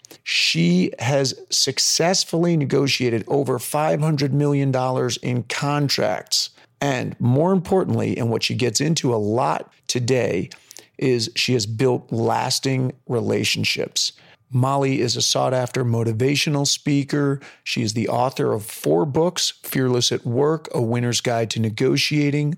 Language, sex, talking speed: English, male, 125 wpm